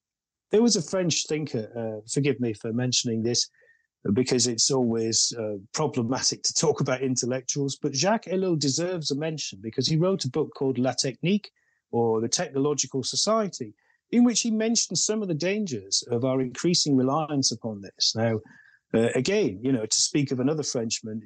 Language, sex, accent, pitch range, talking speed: English, male, British, 120-160 Hz, 175 wpm